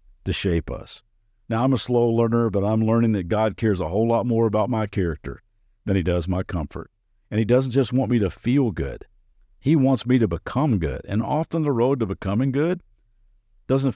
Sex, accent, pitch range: male, American, 100-125 Hz